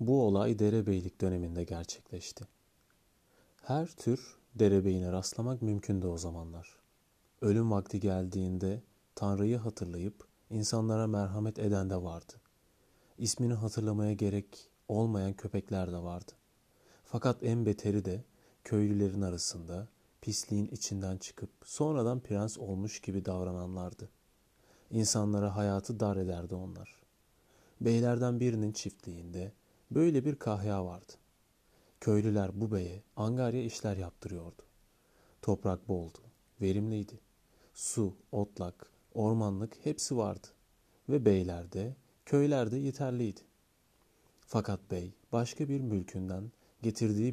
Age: 30-49